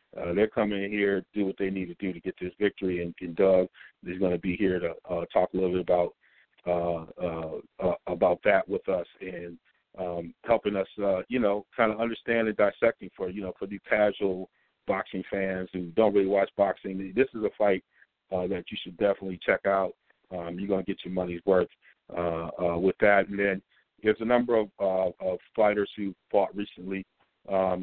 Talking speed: 205 wpm